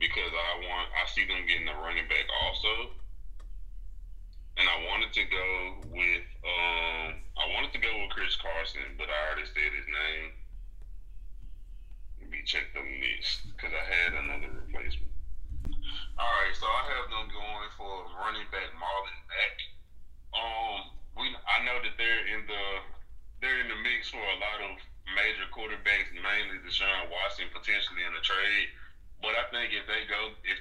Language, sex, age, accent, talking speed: English, male, 20-39, American, 165 wpm